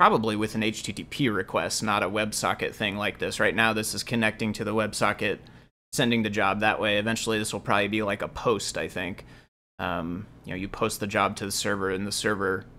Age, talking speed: 30-49, 215 wpm